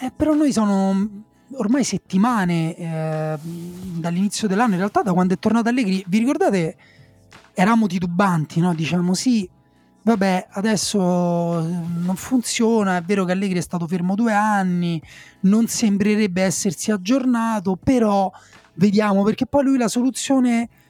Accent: native